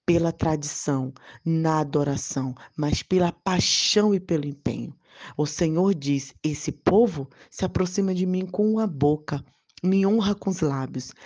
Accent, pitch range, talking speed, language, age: Brazilian, 145-185 Hz, 145 wpm, Portuguese, 20-39